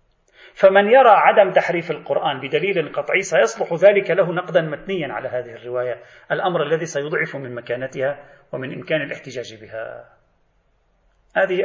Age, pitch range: 40-59, 130-190 Hz